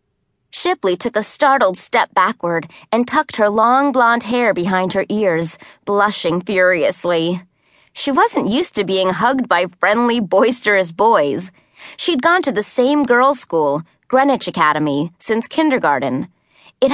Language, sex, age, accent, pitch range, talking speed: English, female, 30-49, American, 180-260 Hz, 140 wpm